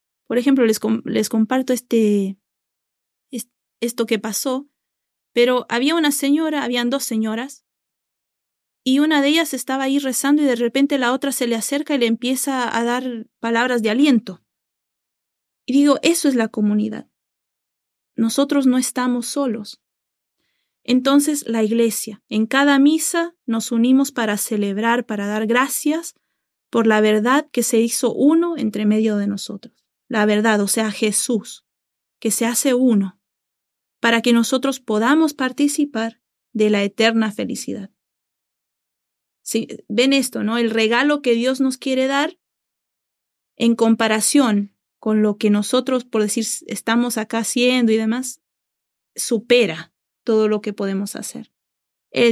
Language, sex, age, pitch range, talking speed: Spanish, female, 30-49, 220-270 Hz, 140 wpm